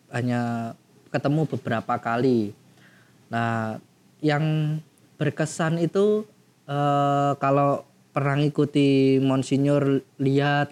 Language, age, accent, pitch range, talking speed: Indonesian, 20-39, native, 135-175 Hz, 80 wpm